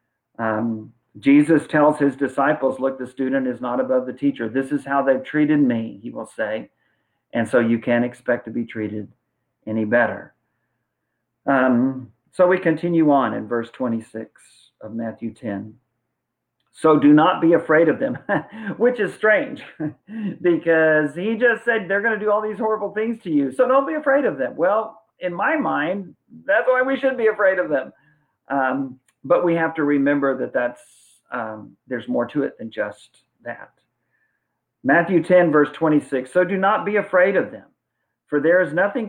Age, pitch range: 50-69, 125-190 Hz